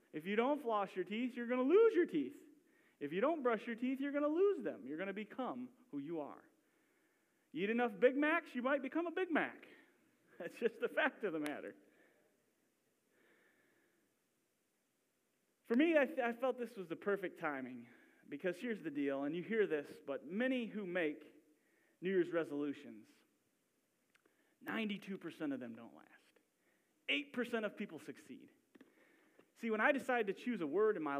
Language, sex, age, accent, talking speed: English, male, 30-49, American, 180 wpm